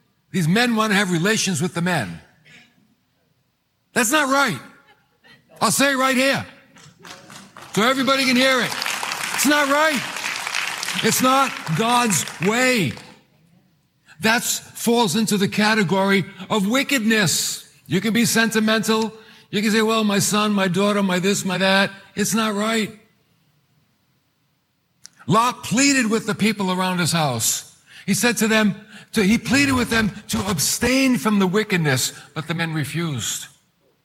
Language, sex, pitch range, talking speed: English, male, 155-220 Hz, 145 wpm